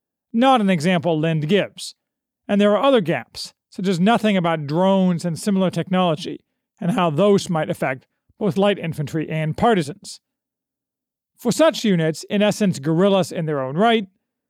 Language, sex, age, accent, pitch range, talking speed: English, male, 40-59, American, 160-220 Hz, 155 wpm